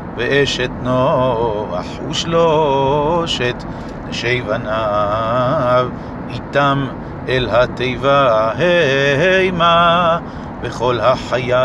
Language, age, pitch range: Hebrew, 50-69, 125-140 Hz